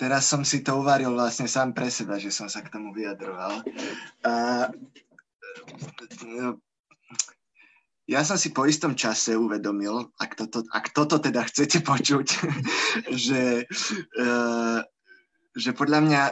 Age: 20-39